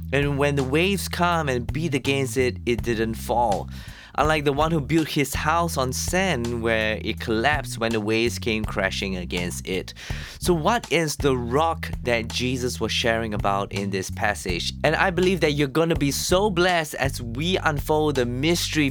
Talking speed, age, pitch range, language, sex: 185 wpm, 20-39, 110-165 Hz, English, male